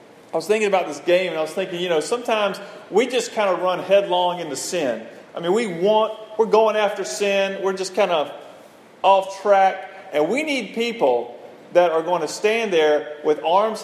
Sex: male